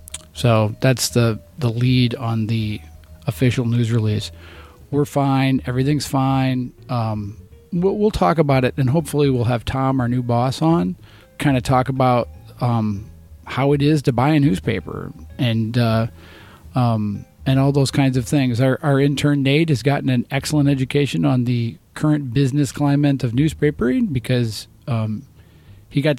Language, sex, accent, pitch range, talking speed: English, male, American, 115-145 Hz, 160 wpm